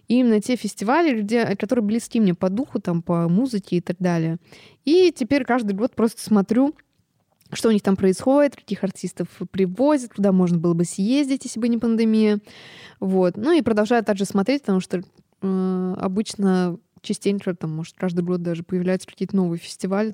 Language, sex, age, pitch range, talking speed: Russian, female, 20-39, 185-230 Hz, 160 wpm